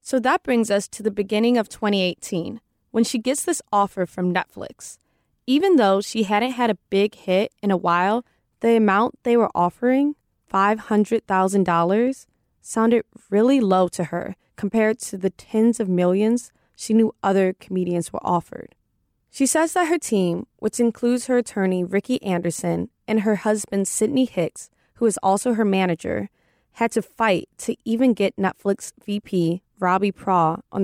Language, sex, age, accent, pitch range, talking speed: English, female, 20-39, American, 190-235 Hz, 160 wpm